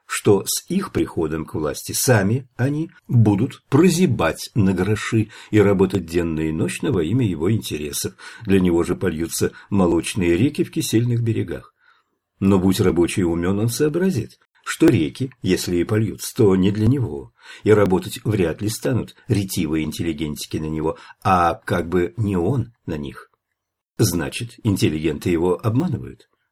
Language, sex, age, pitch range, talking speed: English, male, 50-69, 90-115 Hz, 145 wpm